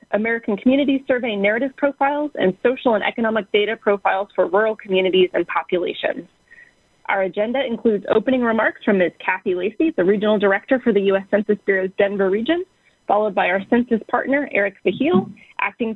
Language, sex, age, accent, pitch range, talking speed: English, female, 30-49, American, 200-260 Hz, 160 wpm